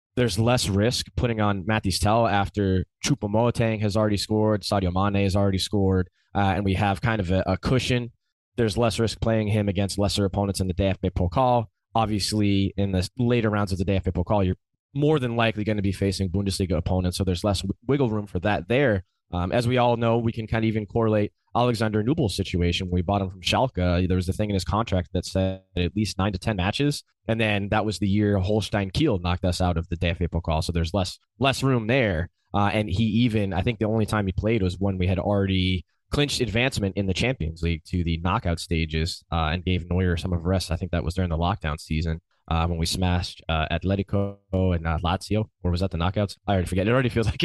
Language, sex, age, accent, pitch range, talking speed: English, male, 20-39, American, 90-110 Hz, 235 wpm